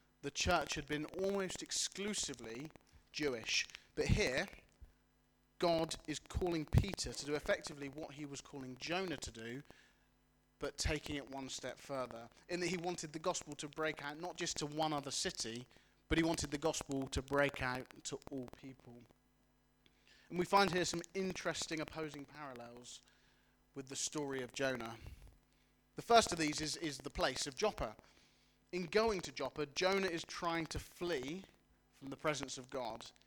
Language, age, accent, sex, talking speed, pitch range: English, 30-49, British, male, 165 wpm, 130-165 Hz